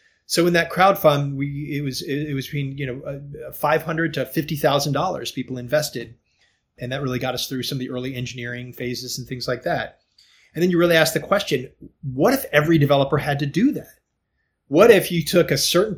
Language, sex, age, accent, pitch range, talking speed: English, male, 30-49, American, 130-155 Hz, 215 wpm